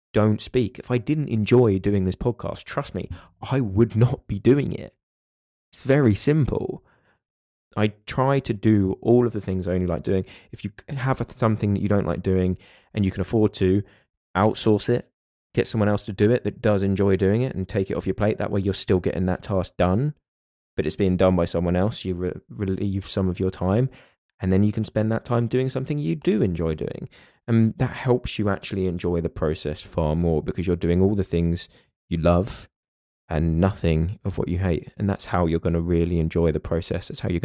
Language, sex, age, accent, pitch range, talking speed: English, male, 20-39, British, 85-110 Hz, 220 wpm